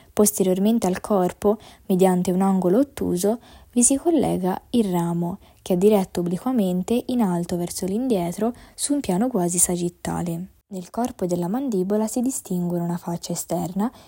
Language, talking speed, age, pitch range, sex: Italian, 150 wpm, 20-39, 180-225 Hz, female